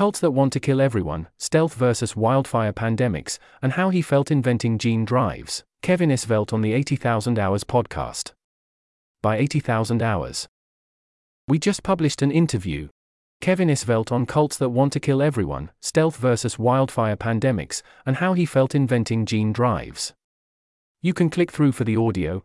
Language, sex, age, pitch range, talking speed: English, male, 30-49, 105-145 Hz, 160 wpm